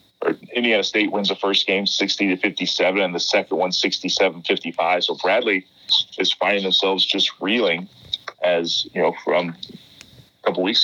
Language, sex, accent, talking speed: English, male, American, 160 wpm